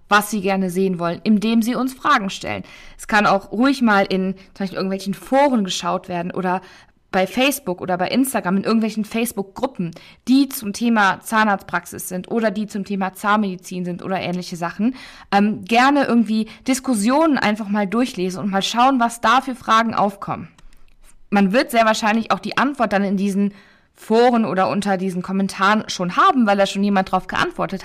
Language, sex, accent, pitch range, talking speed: German, female, German, 195-235 Hz, 175 wpm